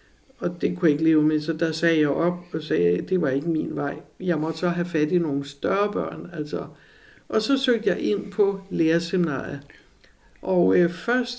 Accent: native